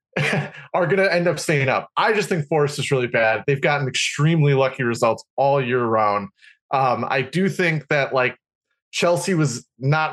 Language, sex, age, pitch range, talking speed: English, male, 30-49, 140-175 Hz, 185 wpm